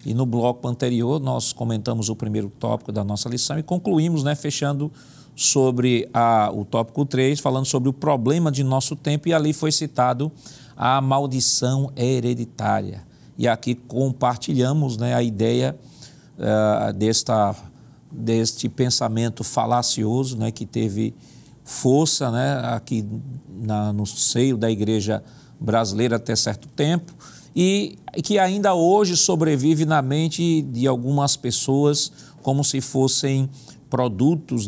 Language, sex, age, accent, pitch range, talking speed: Portuguese, male, 40-59, Brazilian, 120-145 Hz, 130 wpm